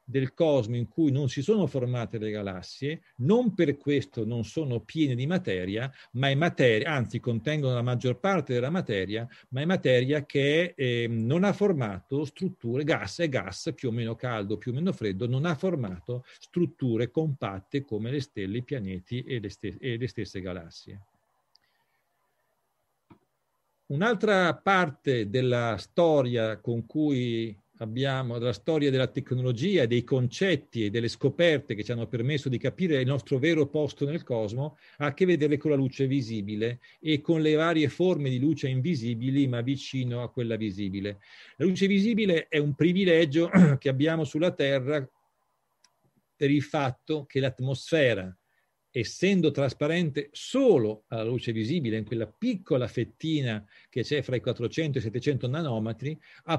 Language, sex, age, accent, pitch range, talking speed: Italian, male, 50-69, native, 120-160 Hz, 155 wpm